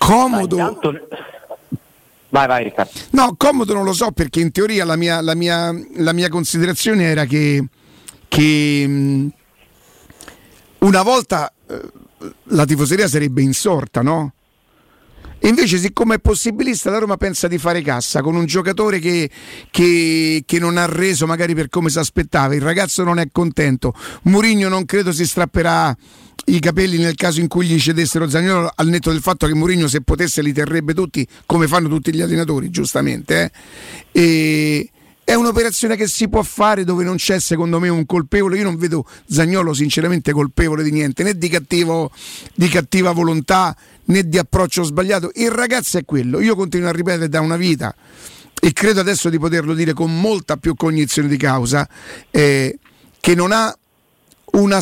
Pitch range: 155-185 Hz